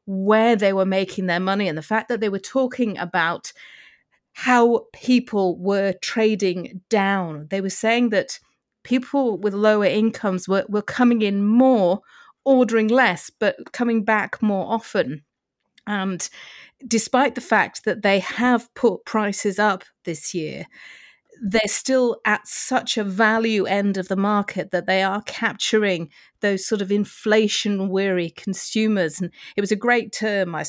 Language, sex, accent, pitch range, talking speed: English, female, British, 190-230 Hz, 155 wpm